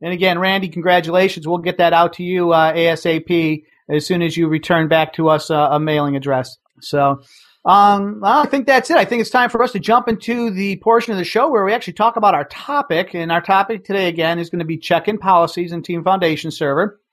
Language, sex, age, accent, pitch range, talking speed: English, male, 40-59, American, 165-200 Hz, 235 wpm